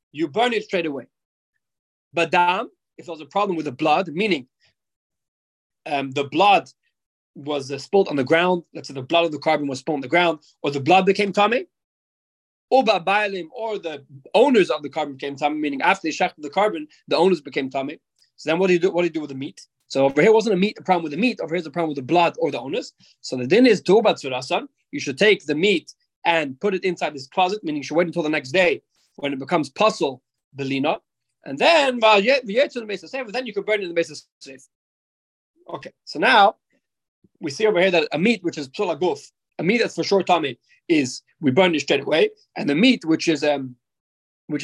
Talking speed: 240 wpm